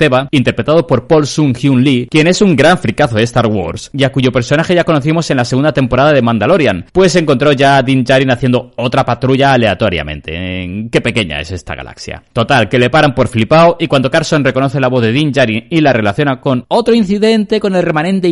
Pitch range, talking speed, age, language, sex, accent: 120-165 Hz, 215 wpm, 30-49, Spanish, male, Spanish